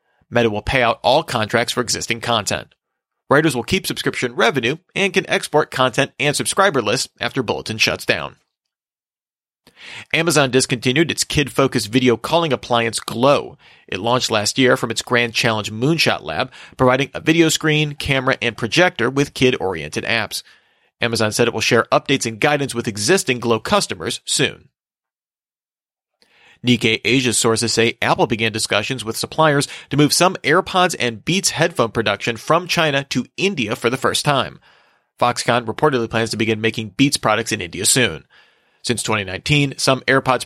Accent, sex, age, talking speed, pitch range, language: American, male, 40-59, 155 wpm, 115-145 Hz, English